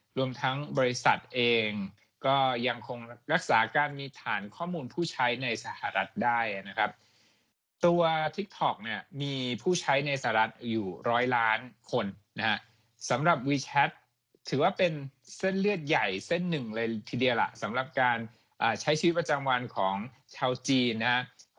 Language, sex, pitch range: Thai, male, 120-160 Hz